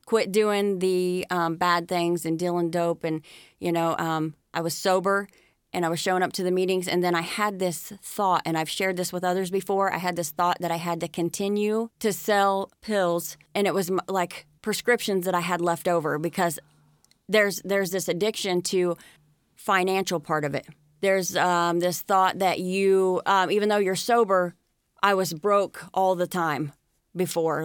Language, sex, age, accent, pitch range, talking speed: English, female, 30-49, American, 170-195 Hz, 190 wpm